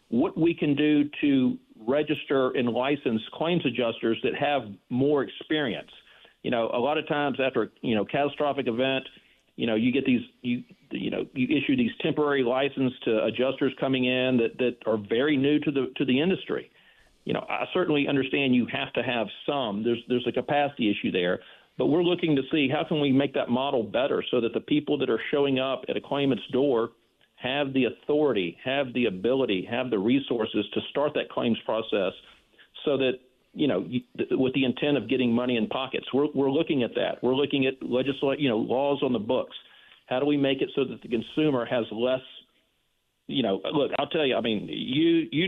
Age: 50-69